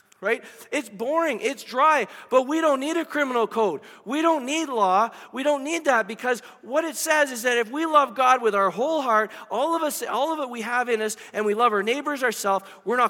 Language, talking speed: English, 240 wpm